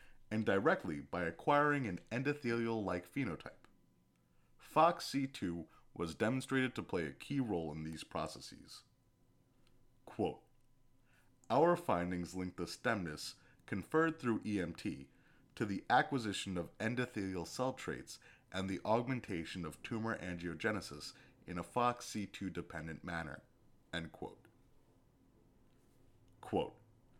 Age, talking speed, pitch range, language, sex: 30-49, 105 wpm, 85-125 Hz, English, male